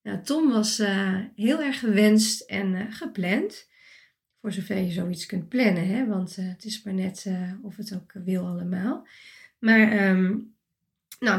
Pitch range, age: 190-225 Hz, 20-39